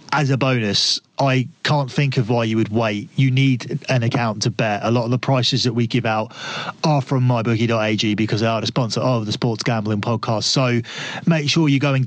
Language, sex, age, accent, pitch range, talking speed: English, male, 30-49, British, 120-150 Hz, 225 wpm